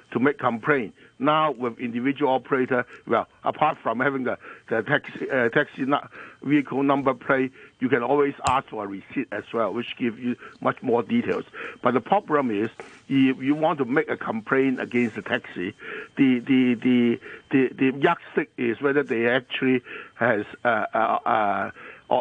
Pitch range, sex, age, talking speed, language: 120-140 Hz, male, 60-79, 170 wpm, English